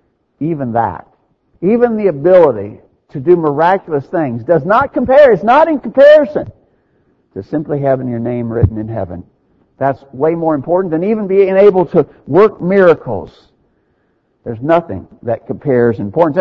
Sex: male